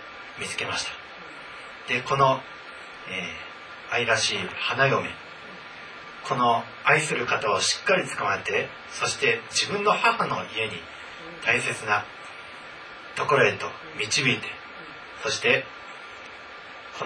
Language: Japanese